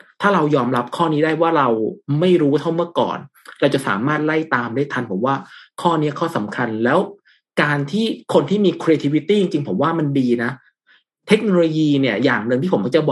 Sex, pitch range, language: male, 130-170 Hz, Thai